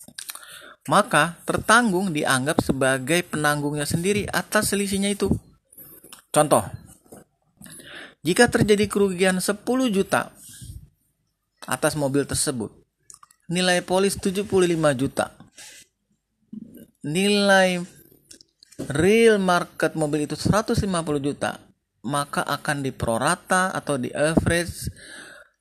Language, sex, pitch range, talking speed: Indonesian, male, 115-175 Hz, 85 wpm